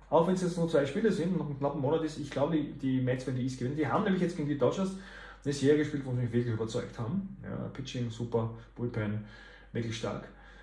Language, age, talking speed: German, 30-49, 250 wpm